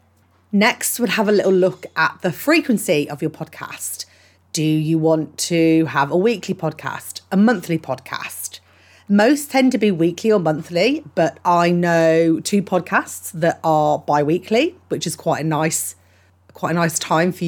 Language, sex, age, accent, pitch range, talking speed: English, female, 30-49, British, 150-190 Hz, 165 wpm